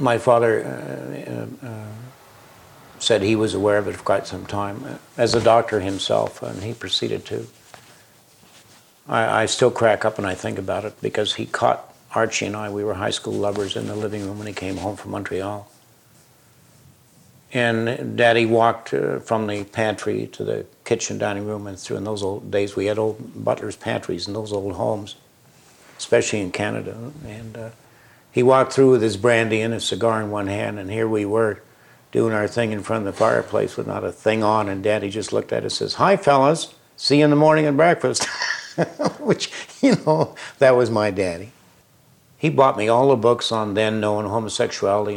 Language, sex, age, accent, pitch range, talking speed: English, male, 60-79, American, 100-120 Hz, 195 wpm